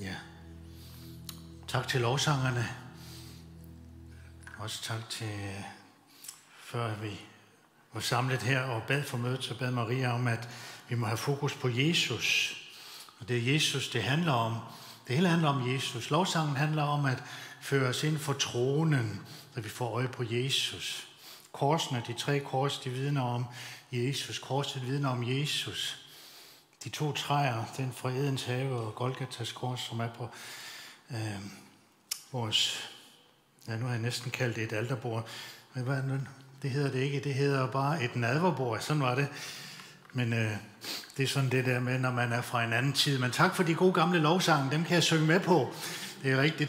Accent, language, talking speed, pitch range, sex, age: native, Danish, 175 wpm, 120-140 Hz, male, 60-79